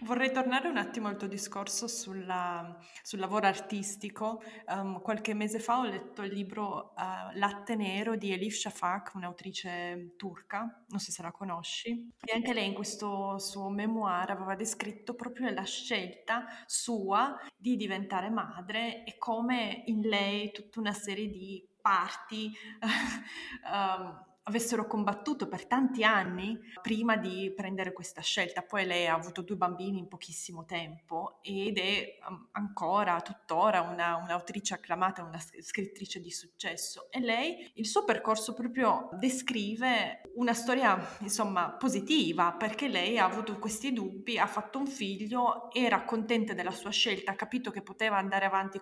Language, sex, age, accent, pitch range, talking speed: Italian, female, 20-39, native, 190-225 Hz, 145 wpm